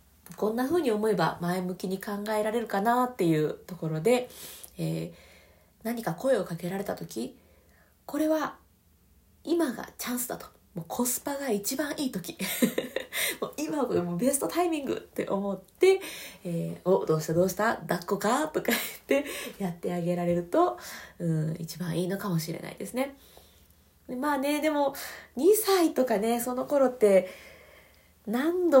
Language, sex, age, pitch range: Japanese, female, 20-39, 175-275 Hz